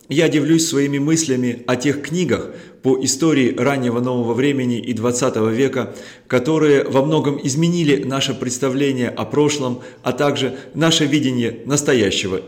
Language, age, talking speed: Russian, 30-49, 135 wpm